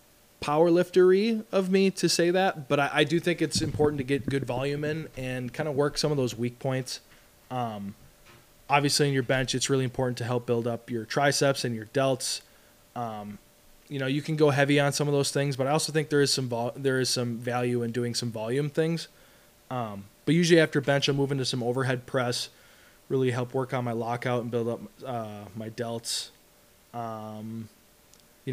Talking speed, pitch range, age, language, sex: 210 wpm, 120-140 Hz, 20-39, English, male